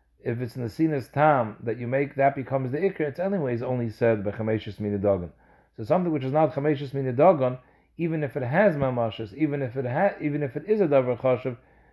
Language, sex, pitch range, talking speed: English, male, 115-155 Hz, 200 wpm